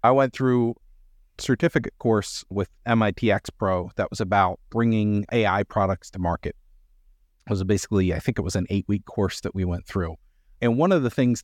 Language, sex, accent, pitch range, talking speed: English, male, American, 95-120 Hz, 180 wpm